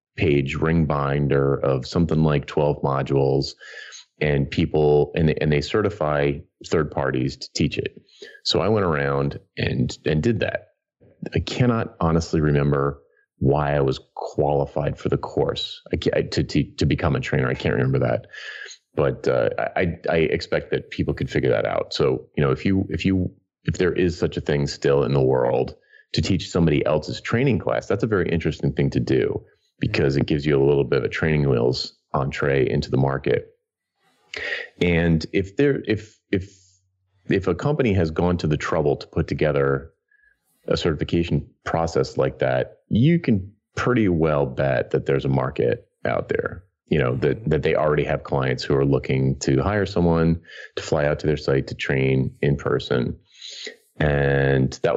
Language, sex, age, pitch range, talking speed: English, male, 30-49, 70-95 Hz, 180 wpm